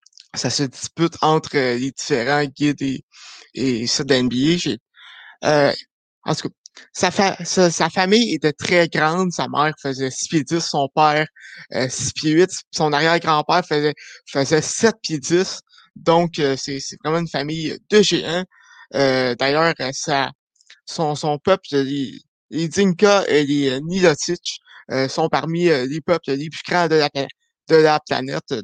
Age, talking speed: 20-39, 155 wpm